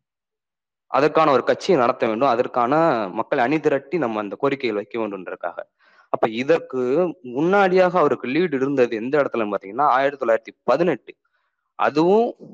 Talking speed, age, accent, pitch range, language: 125 wpm, 20-39, native, 125-185 Hz, Tamil